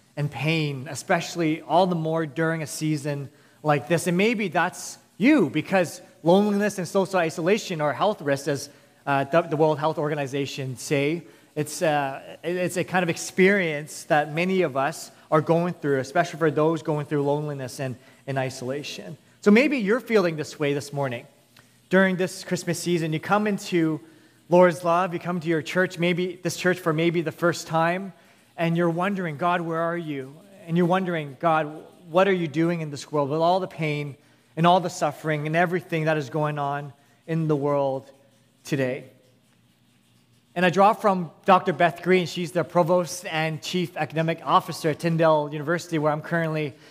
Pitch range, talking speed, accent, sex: 145-180 Hz, 180 wpm, American, male